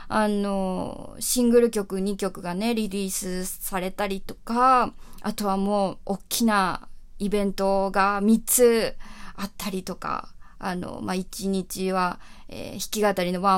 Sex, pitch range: female, 195-245 Hz